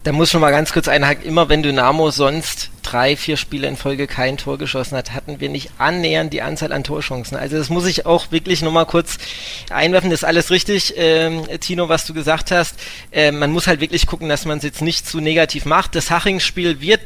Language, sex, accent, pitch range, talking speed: German, male, German, 150-180 Hz, 220 wpm